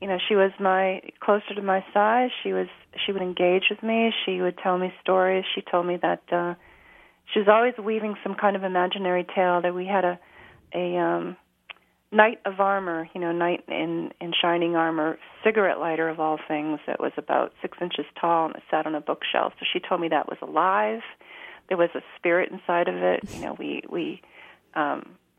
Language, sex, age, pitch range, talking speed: English, female, 40-59, 170-195 Hz, 205 wpm